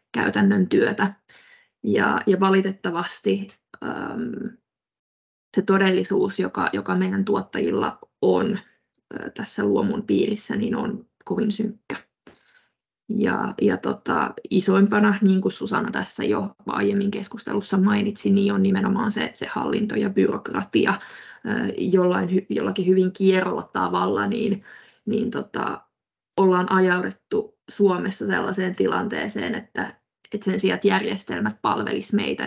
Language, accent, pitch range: Finnish, native, 190-210 Hz